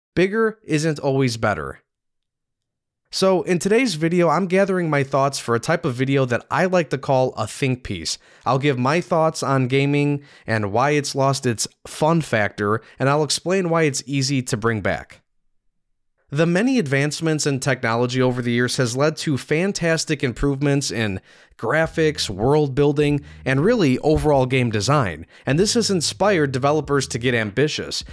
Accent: American